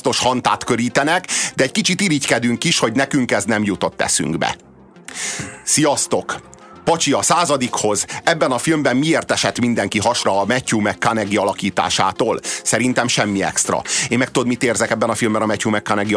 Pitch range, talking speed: 110-130 Hz, 160 wpm